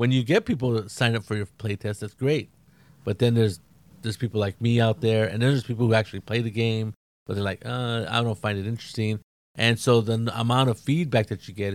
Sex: male